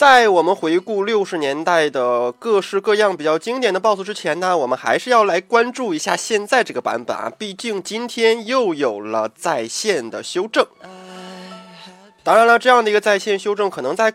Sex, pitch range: male, 175-235 Hz